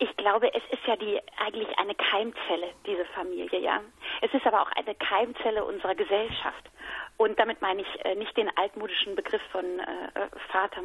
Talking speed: 165 wpm